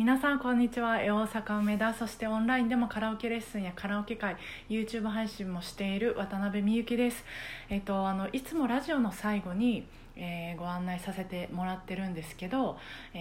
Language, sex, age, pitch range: Japanese, female, 20-39, 185-240 Hz